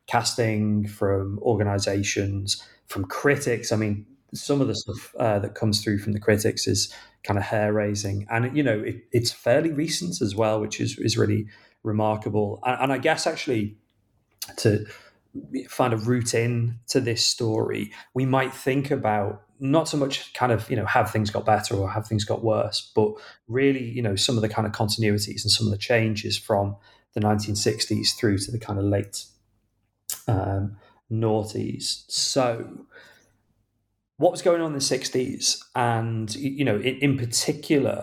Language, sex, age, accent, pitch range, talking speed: English, male, 30-49, British, 105-120 Hz, 175 wpm